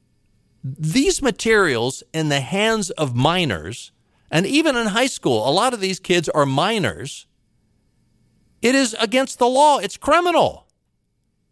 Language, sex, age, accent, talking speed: English, male, 50-69, American, 135 wpm